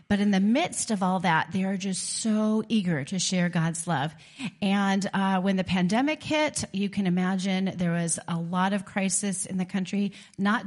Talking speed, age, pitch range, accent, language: 195 wpm, 40-59, 180-215 Hz, American, English